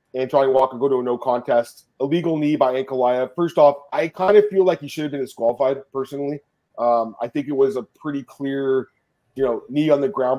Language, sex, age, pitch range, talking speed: English, male, 30-49, 125-150 Hz, 225 wpm